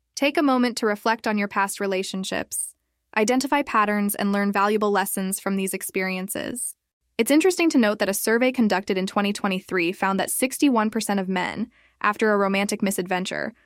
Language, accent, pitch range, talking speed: English, American, 185-215 Hz, 165 wpm